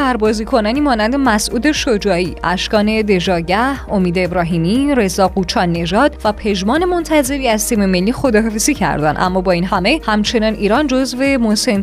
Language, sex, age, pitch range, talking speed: Persian, female, 20-39, 190-250 Hz, 135 wpm